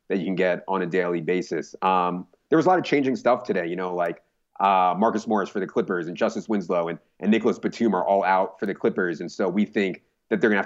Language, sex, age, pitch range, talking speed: English, male, 30-49, 90-105 Hz, 260 wpm